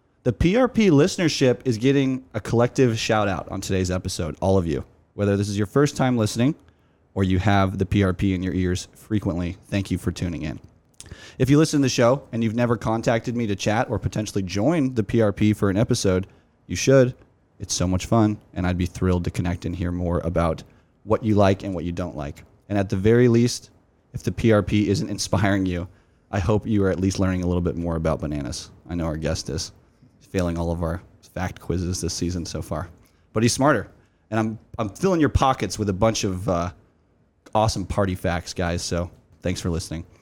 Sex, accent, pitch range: male, American, 90-115 Hz